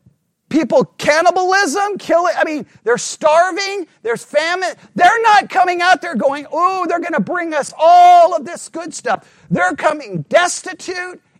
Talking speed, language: 155 wpm, English